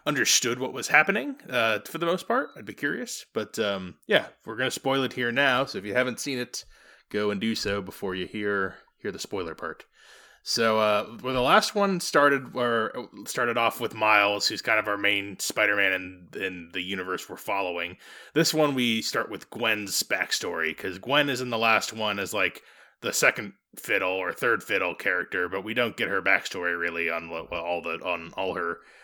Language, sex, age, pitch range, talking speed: English, male, 20-39, 105-135 Hz, 205 wpm